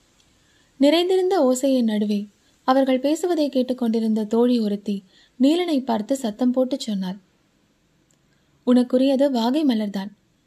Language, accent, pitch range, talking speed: Tamil, native, 220-285 Hz, 90 wpm